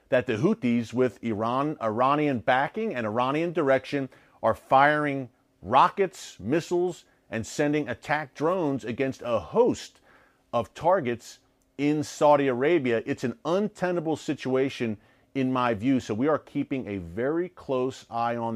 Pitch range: 125-155 Hz